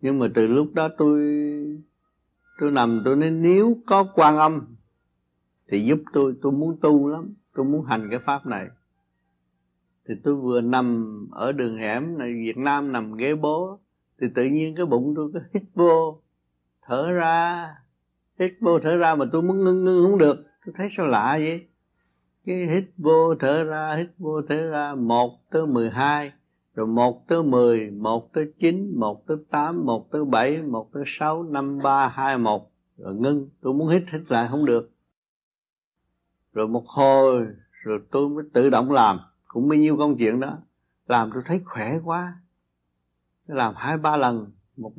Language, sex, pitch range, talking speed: Vietnamese, male, 115-160 Hz, 180 wpm